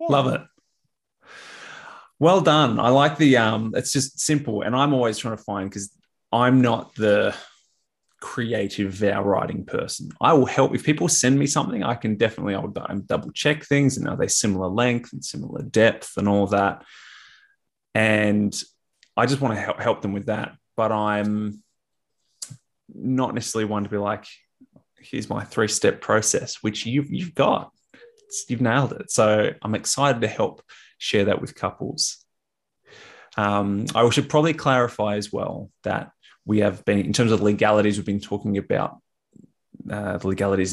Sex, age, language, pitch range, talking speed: male, 20-39, English, 100-125 Hz, 165 wpm